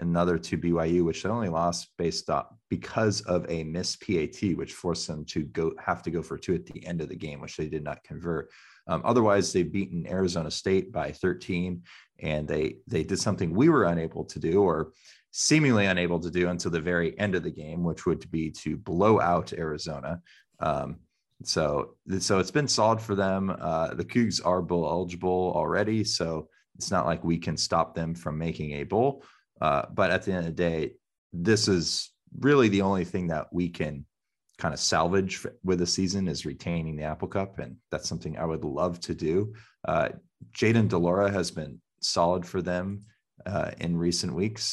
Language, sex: English, male